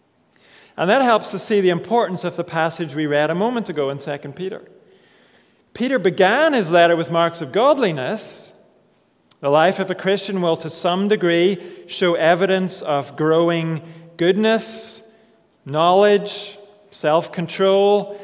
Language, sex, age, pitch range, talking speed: English, male, 40-59, 150-195 Hz, 140 wpm